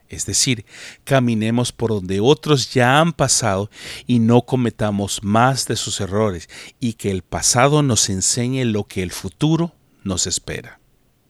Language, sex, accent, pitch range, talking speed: Spanish, male, Mexican, 100-125 Hz, 150 wpm